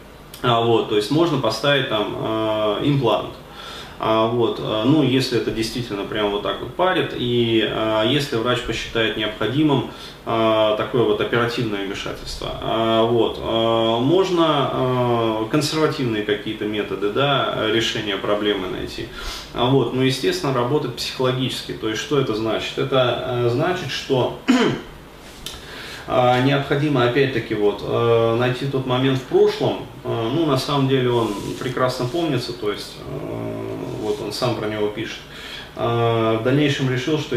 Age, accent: 20-39, native